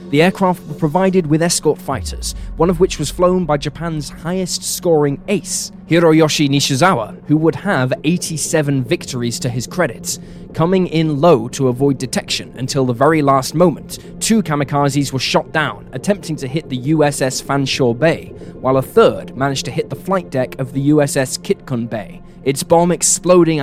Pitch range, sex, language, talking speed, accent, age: 135-175 Hz, male, English, 170 wpm, British, 10-29